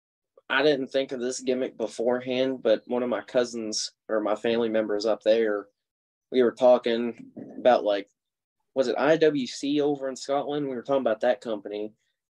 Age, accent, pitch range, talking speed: 20-39, American, 105-120 Hz, 170 wpm